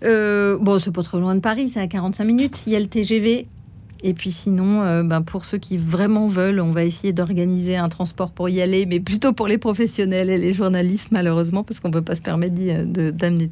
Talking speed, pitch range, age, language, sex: 240 wpm, 165-200 Hz, 30-49, French, female